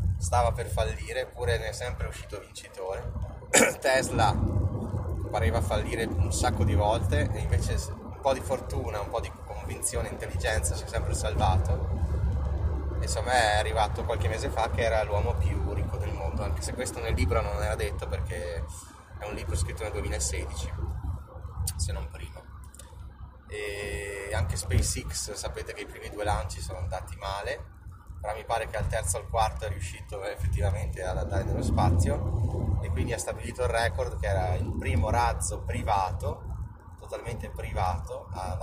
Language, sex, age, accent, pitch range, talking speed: Italian, male, 20-39, native, 85-105 Hz, 165 wpm